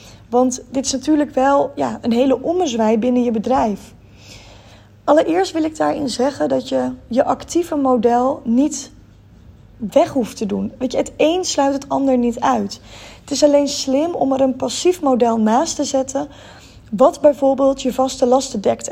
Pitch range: 215-275 Hz